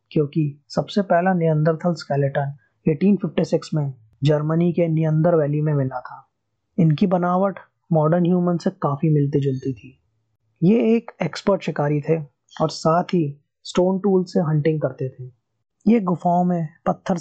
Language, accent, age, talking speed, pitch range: Hindi, native, 20-39, 145 wpm, 145-180 Hz